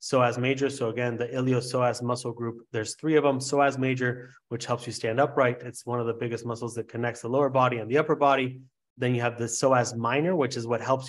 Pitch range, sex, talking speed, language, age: 115-135 Hz, male, 245 wpm, English, 20-39